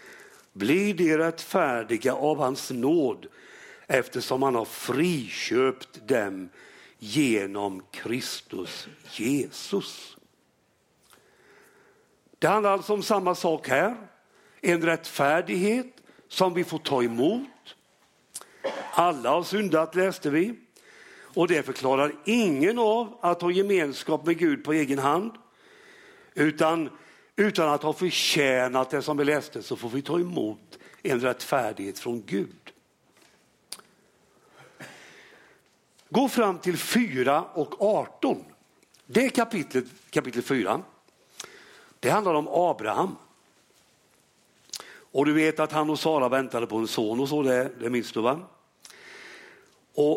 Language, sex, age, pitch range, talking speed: Swedish, male, 60-79, 135-205 Hz, 115 wpm